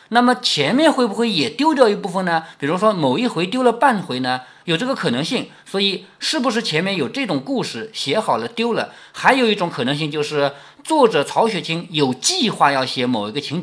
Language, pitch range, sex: Chinese, 150-245 Hz, male